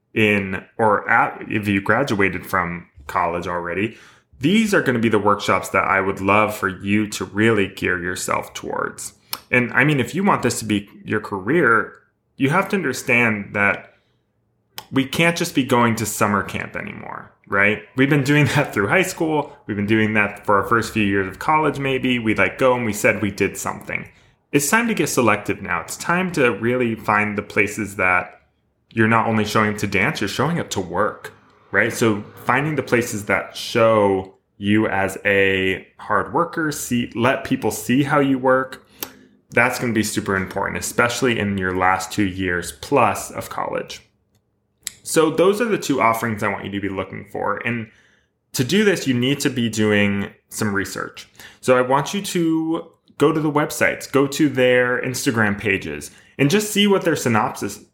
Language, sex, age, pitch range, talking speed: English, male, 20-39, 100-135 Hz, 195 wpm